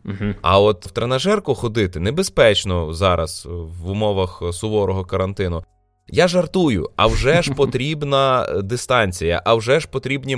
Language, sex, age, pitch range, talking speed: Ukrainian, male, 20-39, 105-140 Hz, 125 wpm